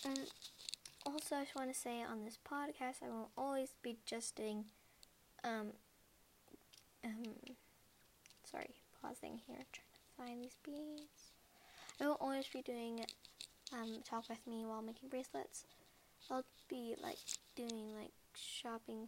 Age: 10-29